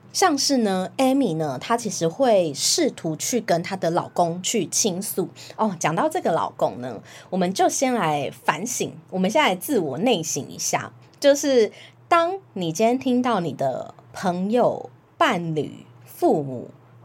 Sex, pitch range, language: female, 180-265 Hz, Chinese